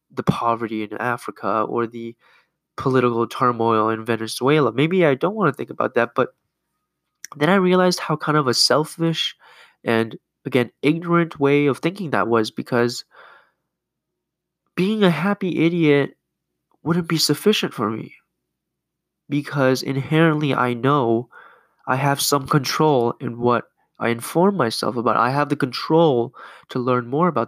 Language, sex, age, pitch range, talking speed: English, male, 20-39, 120-160 Hz, 150 wpm